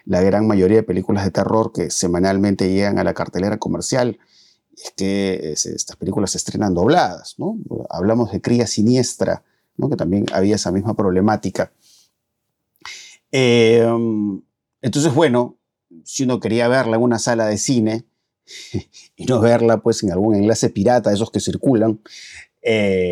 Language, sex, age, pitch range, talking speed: Spanish, male, 30-49, 100-120 Hz, 140 wpm